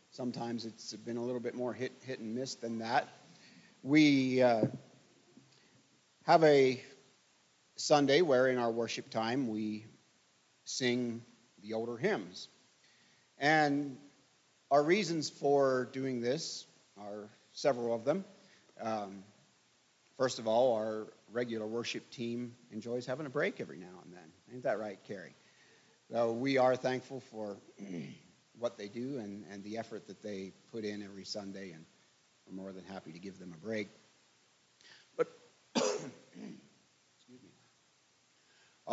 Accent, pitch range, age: American, 110-135 Hz, 40-59